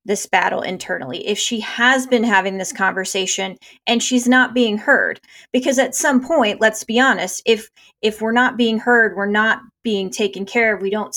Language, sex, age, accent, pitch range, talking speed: English, female, 20-39, American, 200-245 Hz, 195 wpm